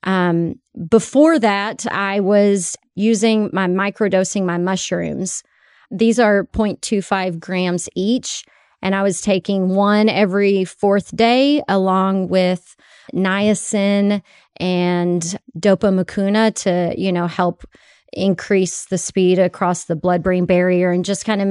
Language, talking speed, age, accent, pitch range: English, 125 wpm, 30-49, American, 185-220 Hz